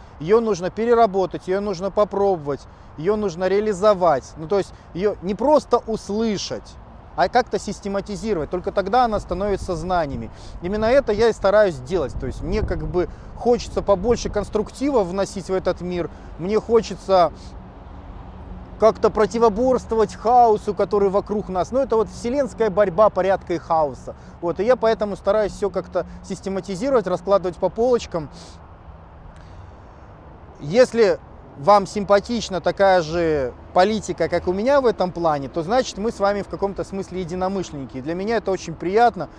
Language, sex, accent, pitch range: Russian, male, native, 170-210 Hz